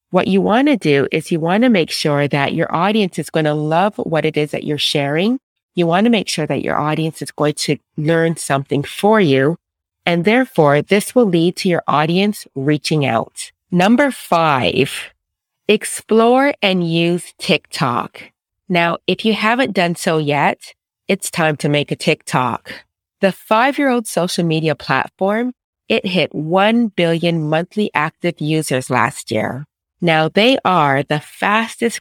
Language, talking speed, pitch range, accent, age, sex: English, 165 wpm, 150-195 Hz, American, 30-49, female